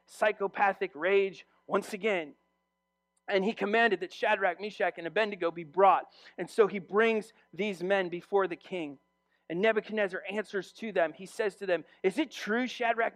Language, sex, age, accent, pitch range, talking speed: English, male, 40-59, American, 150-230 Hz, 165 wpm